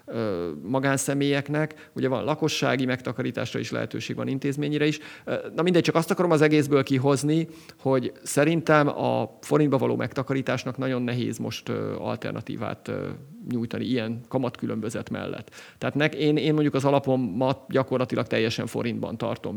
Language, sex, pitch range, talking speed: Hungarian, male, 125-150 Hz, 130 wpm